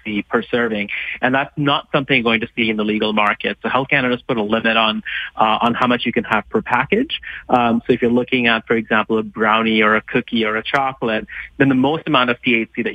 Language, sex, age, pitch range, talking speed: English, male, 30-49, 110-125 Hz, 240 wpm